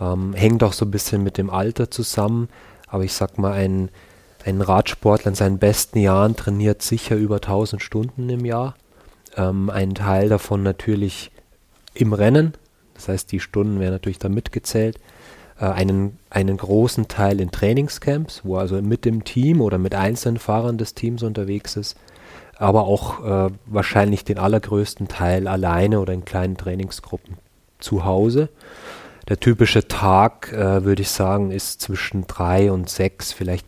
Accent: German